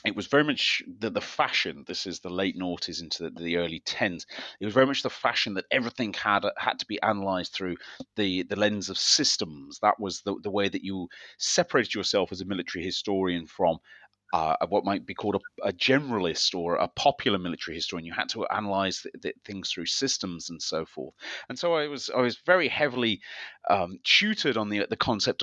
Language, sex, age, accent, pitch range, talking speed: English, male, 30-49, British, 95-145 Hz, 210 wpm